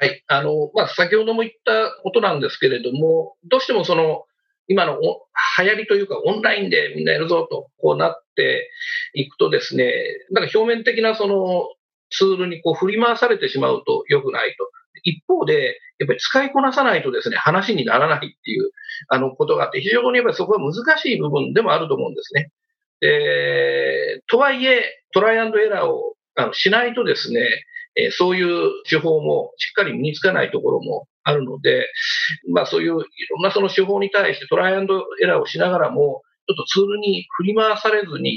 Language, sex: Japanese, male